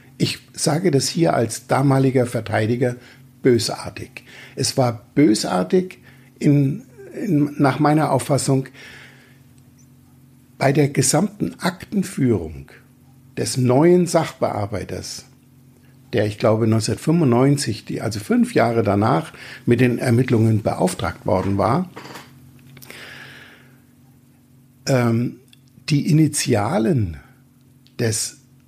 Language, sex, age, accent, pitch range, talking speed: German, male, 60-79, German, 120-140 Hz, 85 wpm